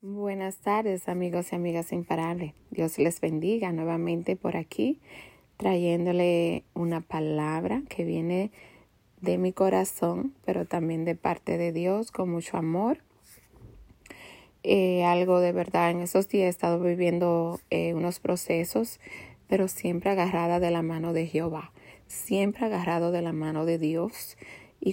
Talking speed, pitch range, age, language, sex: 140 wpm, 165-195 Hz, 30-49, Spanish, female